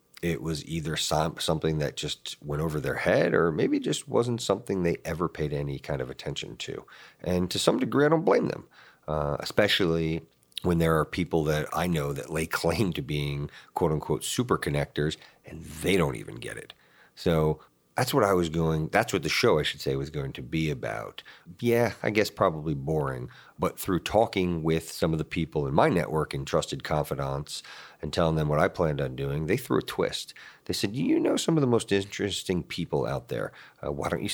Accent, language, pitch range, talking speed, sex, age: American, English, 75-90 Hz, 210 wpm, male, 40-59